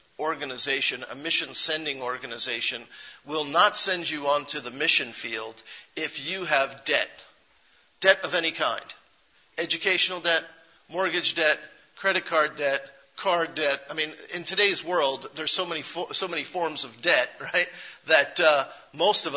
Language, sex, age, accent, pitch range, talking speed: English, male, 50-69, American, 150-185 Hz, 150 wpm